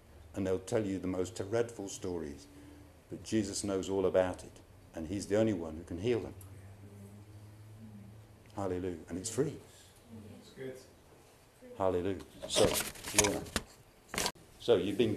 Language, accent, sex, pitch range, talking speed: English, British, male, 95-125 Hz, 130 wpm